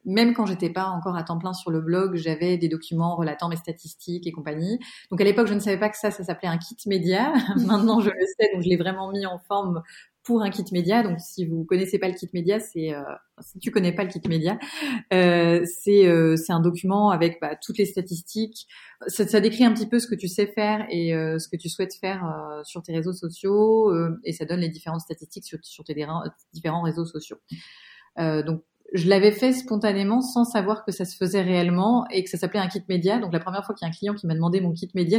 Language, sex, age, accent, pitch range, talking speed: French, female, 30-49, French, 165-210 Hz, 255 wpm